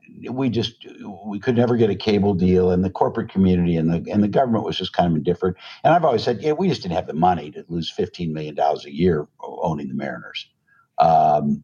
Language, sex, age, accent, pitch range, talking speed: English, male, 60-79, American, 90-120 Hz, 225 wpm